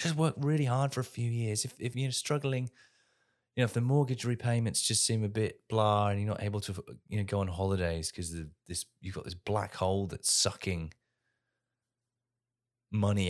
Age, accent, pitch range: 30-49, British, 90-120 Hz